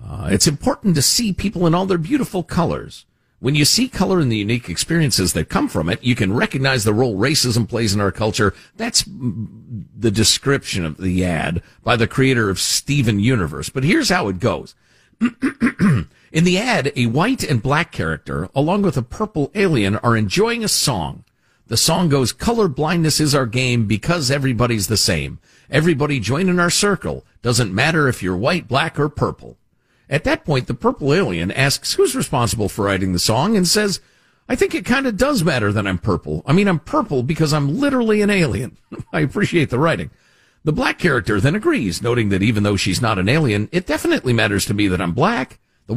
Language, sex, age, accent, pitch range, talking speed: English, male, 50-69, American, 105-175 Hz, 200 wpm